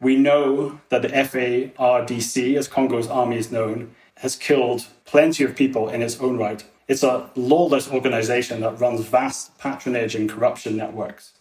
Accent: British